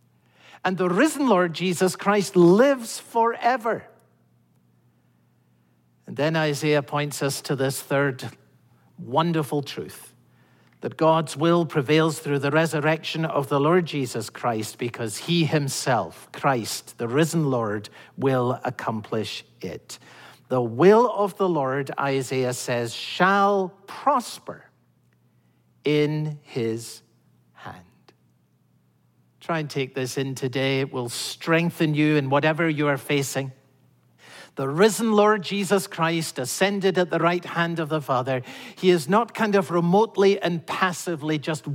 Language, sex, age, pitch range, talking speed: English, male, 60-79, 125-170 Hz, 125 wpm